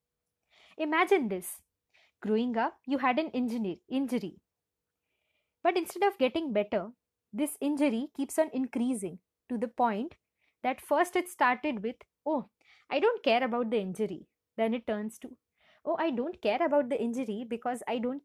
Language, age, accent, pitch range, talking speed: English, 20-39, Indian, 220-280 Hz, 155 wpm